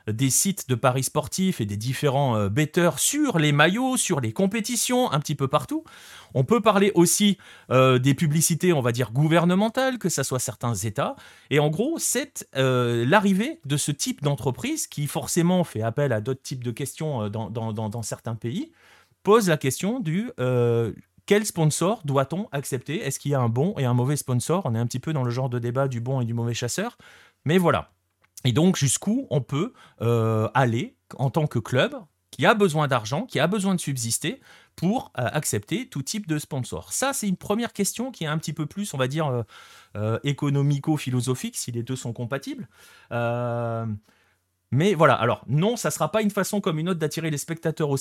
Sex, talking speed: male, 205 wpm